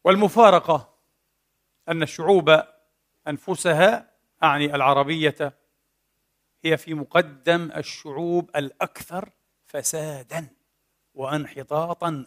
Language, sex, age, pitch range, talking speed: Arabic, male, 50-69, 150-185 Hz, 65 wpm